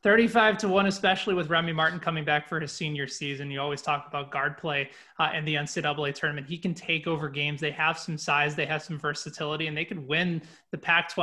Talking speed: 230 wpm